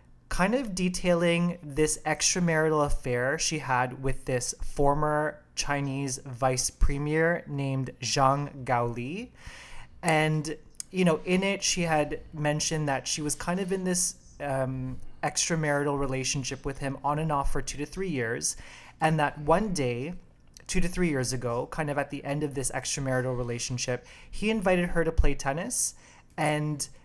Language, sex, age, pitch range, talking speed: English, male, 30-49, 130-160 Hz, 155 wpm